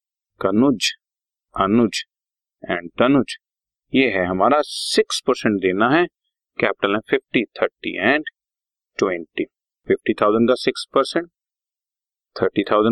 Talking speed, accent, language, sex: 70 wpm, native, Hindi, male